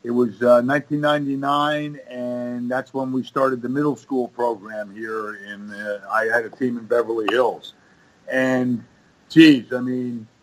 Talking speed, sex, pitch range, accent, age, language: 155 wpm, male, 120-150 Hz, American, 50-69, English